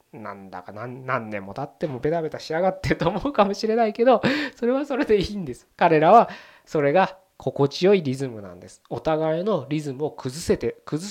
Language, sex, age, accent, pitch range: Japanese, male, 20-39, native, 130-200 Hz